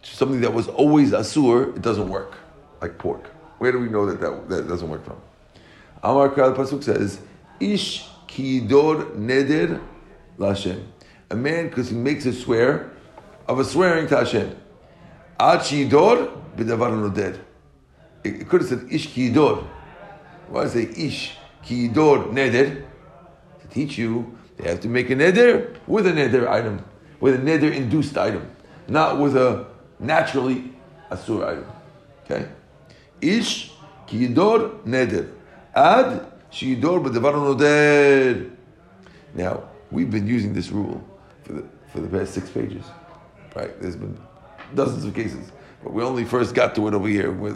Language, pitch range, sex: English, 105-145 Hz, male